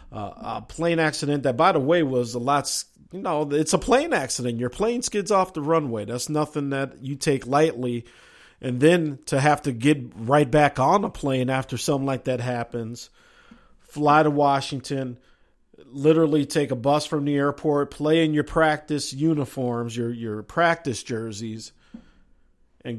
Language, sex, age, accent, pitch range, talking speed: English, male, 50-69, American, 120-150 Hz, 170 wpm